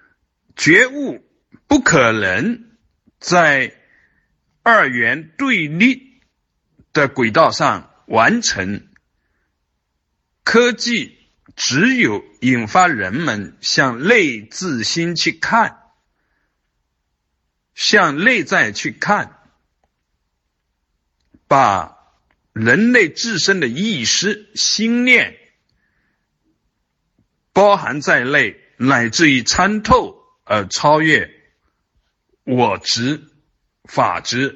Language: Chinese